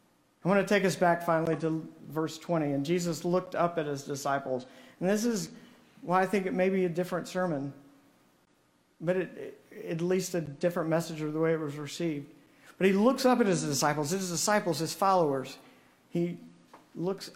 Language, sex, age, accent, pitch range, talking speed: English, male, 50-69, American, 150-185 Hz, 195 wpm